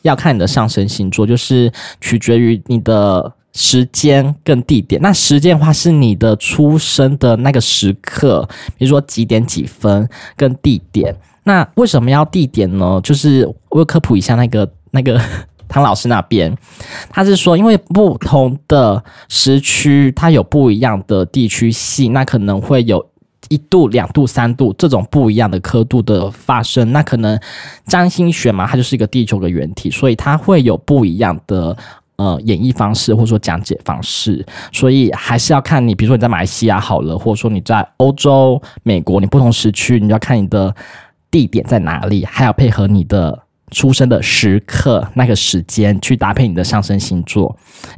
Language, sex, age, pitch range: Chinese, male, 10-29, 105-140 Hz